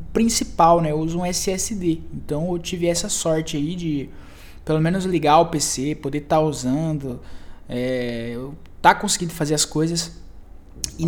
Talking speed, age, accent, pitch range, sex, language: 155 wpm, 20-39, Brazilian, 130-195 Hz, male, Portuguese